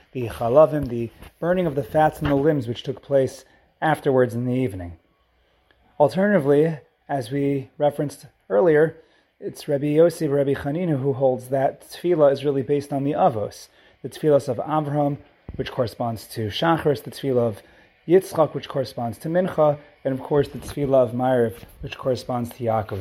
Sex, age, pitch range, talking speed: male, 30-49, 120-150 Hz, 165 wpm